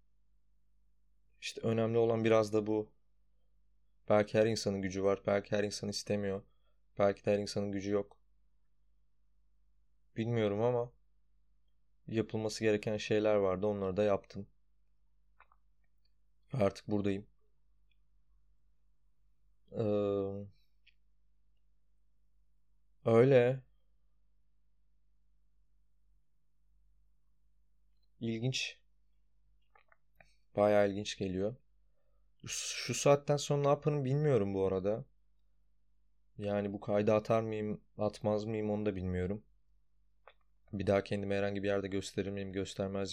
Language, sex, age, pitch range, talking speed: Turkish, male, 20-39, 75-105 Hz, 90 wpm